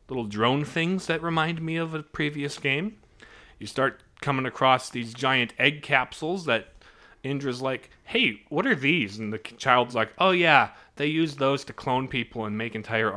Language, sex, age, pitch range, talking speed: English, male, 30-49, 110-150 Hz, 180 wpm